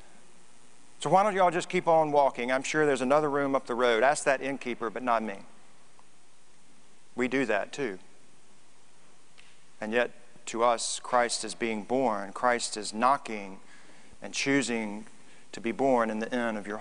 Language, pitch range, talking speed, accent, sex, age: English, 120-160 Hz, 170 wpm, American, male, 40-59